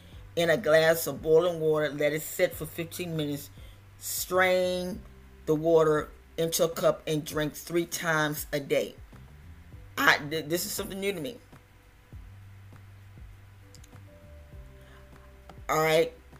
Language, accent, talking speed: English, American, 120 wpm